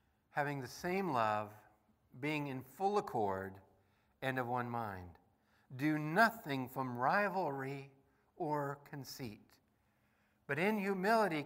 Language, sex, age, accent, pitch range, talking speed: English, male, 60-79, American, 115-175 Hz, 110 wpm